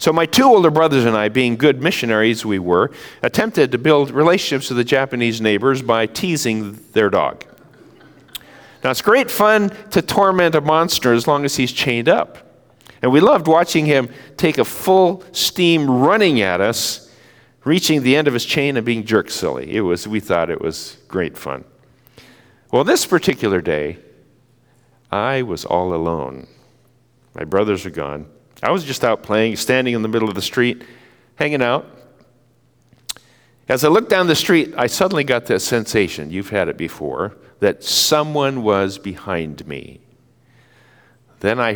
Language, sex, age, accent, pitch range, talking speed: English, male, 50-69, American, 95-135 Hz, 165 wpm